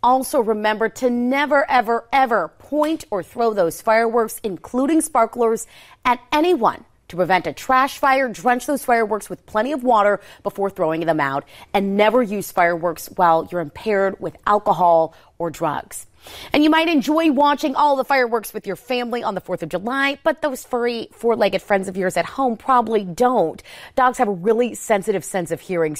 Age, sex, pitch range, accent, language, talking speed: 30-49, female, 175-245 Hz, American, English, 180 wpm